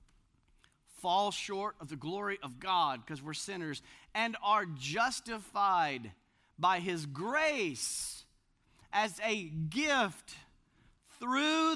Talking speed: 100 wpm